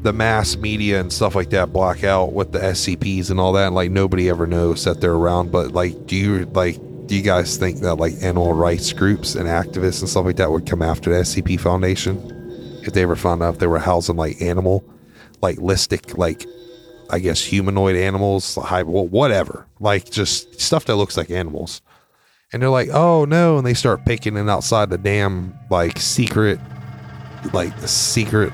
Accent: American